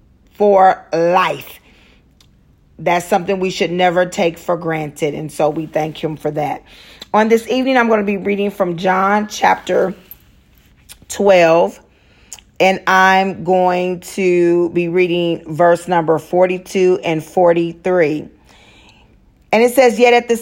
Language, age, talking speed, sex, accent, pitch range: English, 40-59, 135 wpm, female, American, 160-205 Hz